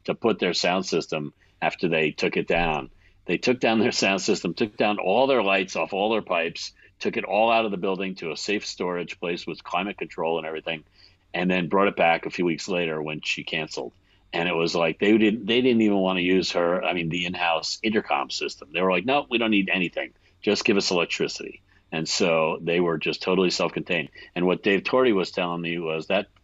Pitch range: 85-95 Hz